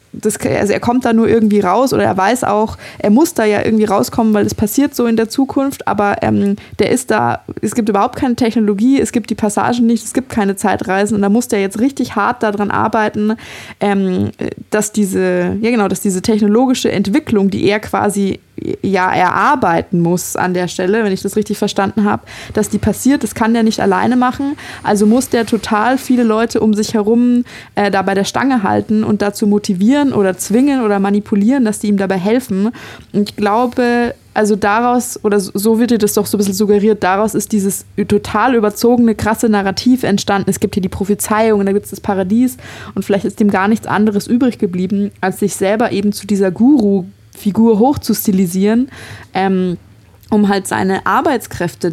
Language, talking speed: German, 195 wpm